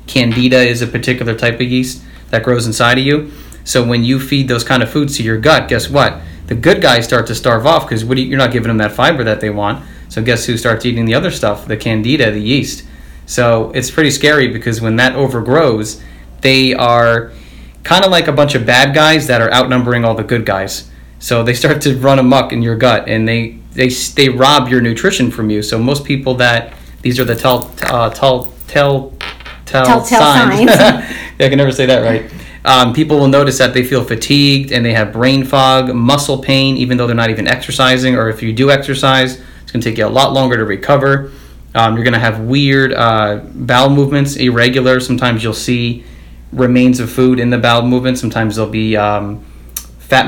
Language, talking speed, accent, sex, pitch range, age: English, 220 wpm, American, male, 110-130 Hz, 30-49